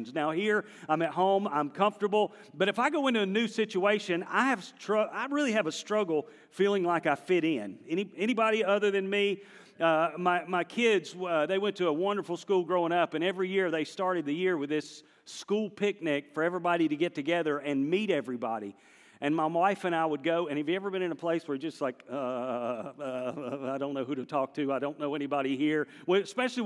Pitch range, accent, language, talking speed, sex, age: 155-205 Hz, American, English, 225 wpm, male, 40-59